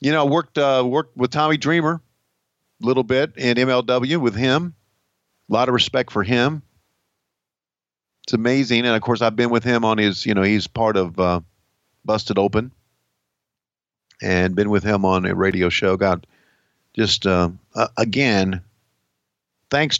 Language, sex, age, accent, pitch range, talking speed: English, male, 50-69, American, 95-125 Hz, 165 wpm